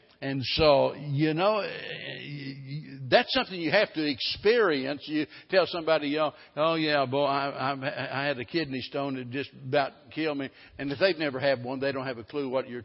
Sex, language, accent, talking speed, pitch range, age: male, English, American, 195 wpm, 125-145 Hz, 60-79